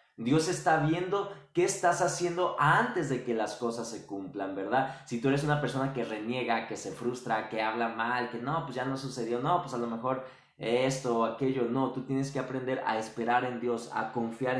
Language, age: Spanish, 20-39